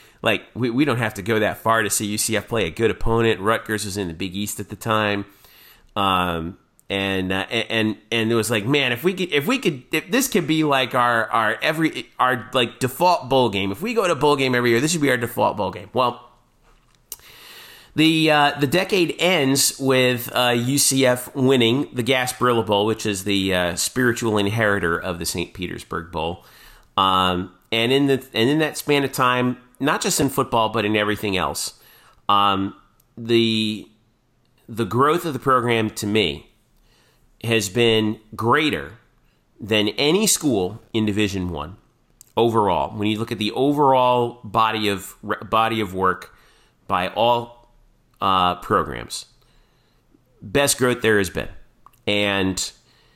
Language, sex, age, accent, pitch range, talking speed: English, male, 30-49, American, 105-130 Hz, 170 wpm